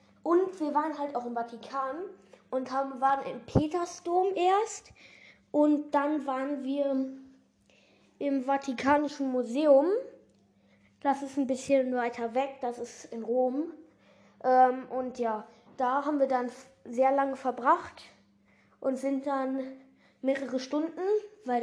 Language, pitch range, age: German, 255-300 Hz, 10-29